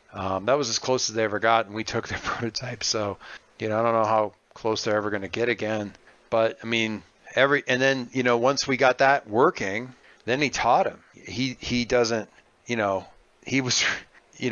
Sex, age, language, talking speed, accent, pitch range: male, 40-59, English, 220 wpm, American, 100-125 Hz